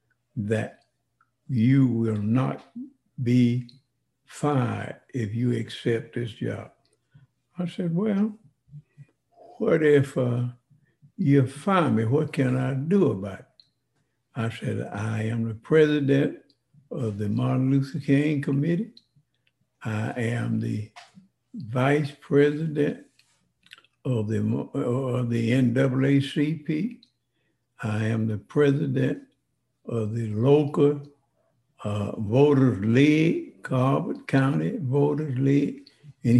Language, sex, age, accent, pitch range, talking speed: English, male, 60-79, American, 115-145 Hz, 100 wpm